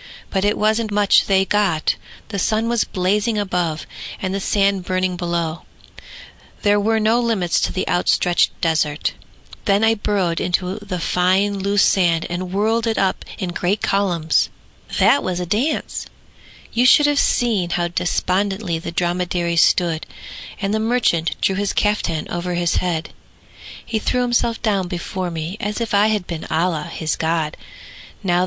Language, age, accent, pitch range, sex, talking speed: English, 40-59, American, 175-215 Hz, female, 160 wpm